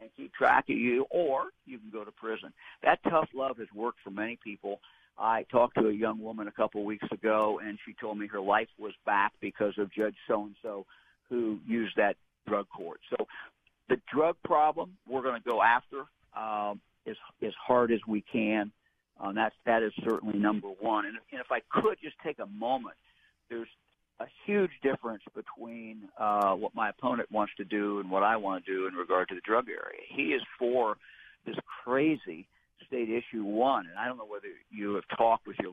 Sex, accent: male, American